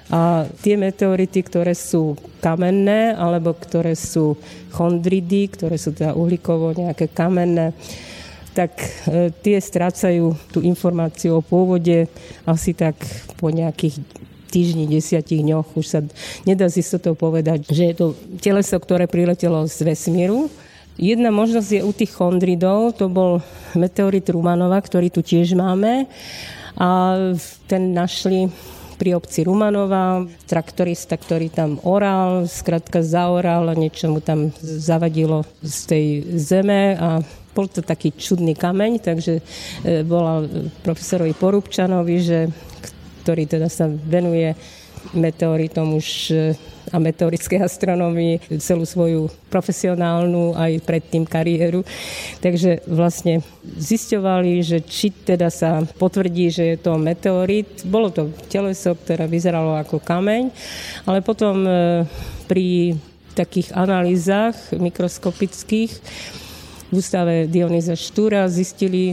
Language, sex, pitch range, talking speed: Slovak, female, 165-185 Hz, 115 wpm